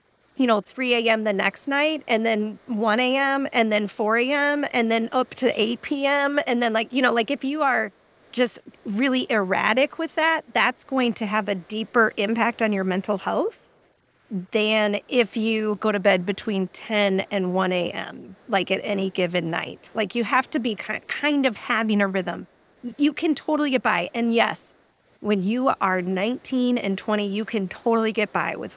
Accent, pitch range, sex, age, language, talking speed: American, 200-250 Hz, female, 30-49, English, 190 wpm